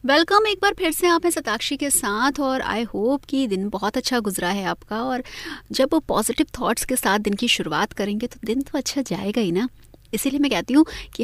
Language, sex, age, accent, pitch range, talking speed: Hindi, female, 30-49, native, 205-275 Hz, 230 wpm